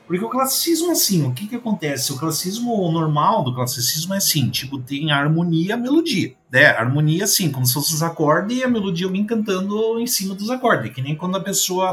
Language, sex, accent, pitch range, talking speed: Portuguese, male, Brazilian, 125-195 Hz, 230 wpm